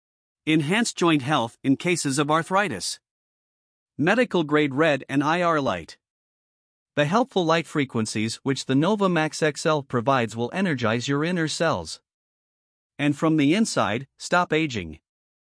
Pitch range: 135-180 Hz